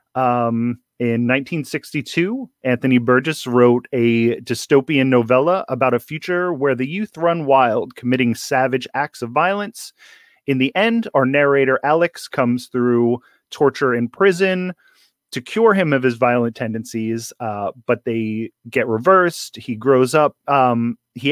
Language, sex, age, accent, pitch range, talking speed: English, male, 30-49, American, 120-155 Hz, 140 wpm